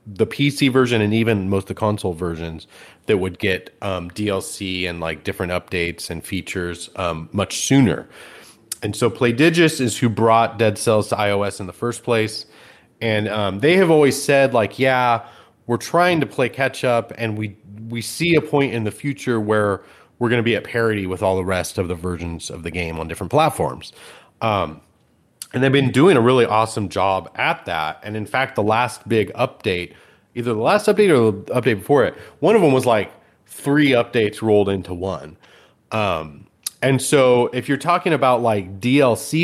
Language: English